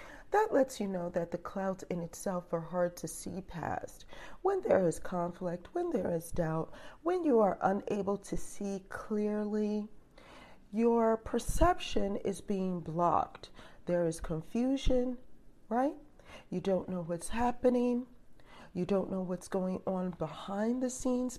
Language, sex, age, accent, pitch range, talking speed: English, female, 40-59, American, 175-245 Hz, 145 wpm